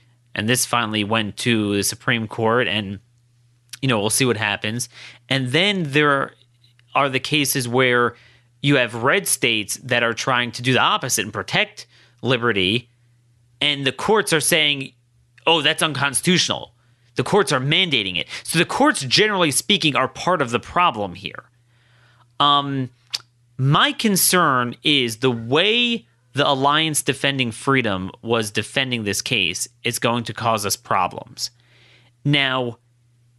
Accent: American